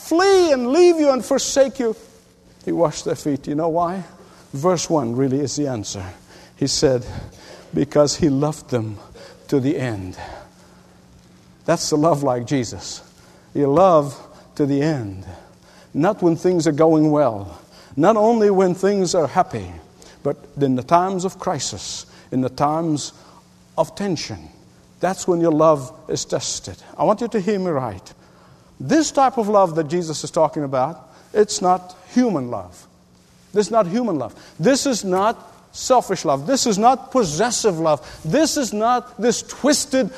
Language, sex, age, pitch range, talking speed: English, male, 50-69, 140-220 Hz, 160 wpm